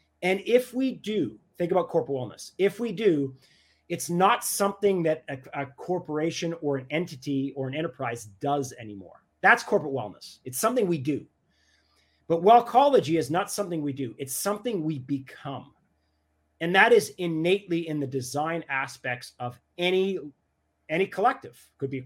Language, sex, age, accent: English, male, 30-49, American